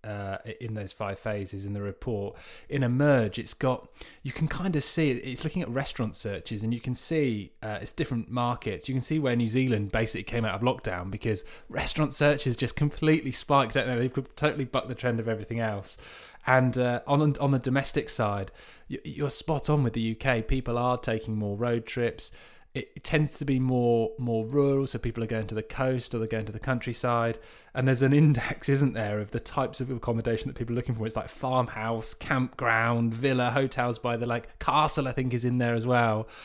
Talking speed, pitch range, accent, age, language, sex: 210 wpm, 110-135 Hz, British, 20-39, English, male